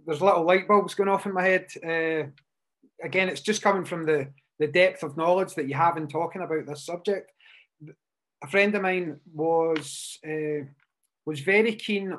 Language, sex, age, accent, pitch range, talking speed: English, male, 30-49, British, 155-190 Hz, 180 wpm